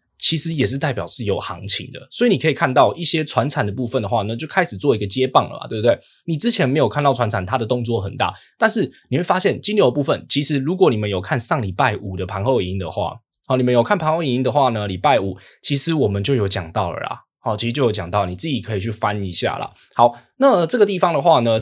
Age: 20-39